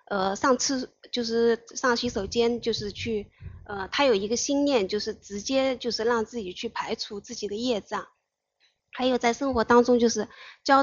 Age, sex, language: 20-39, female, Chinese